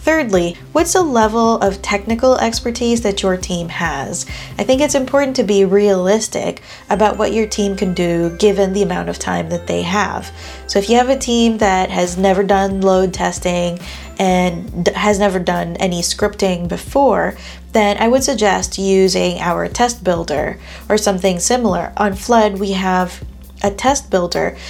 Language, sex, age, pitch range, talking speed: English, female, 20-39, 180-220 Hz, 170 wpm